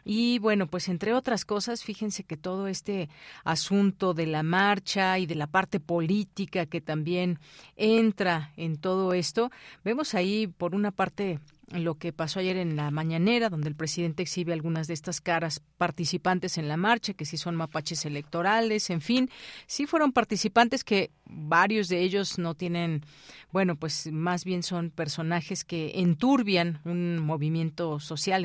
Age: 40-59